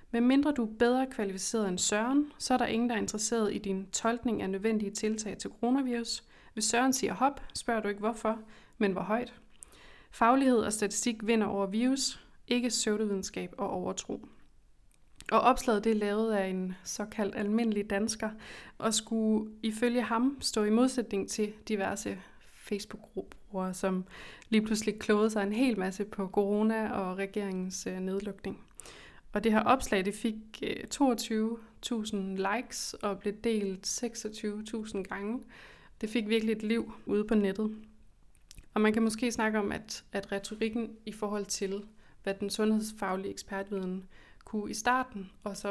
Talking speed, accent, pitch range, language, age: 155 wpm, native, 205-230 Hz, Danish, 20-39